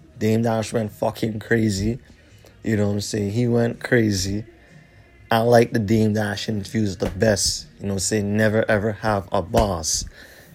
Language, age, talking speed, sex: English, 20-39, 180 wpm, male